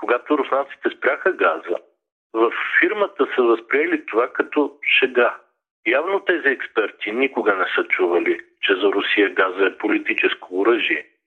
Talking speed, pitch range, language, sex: 135 wpm, 325-410 Hz, Bulgarian, male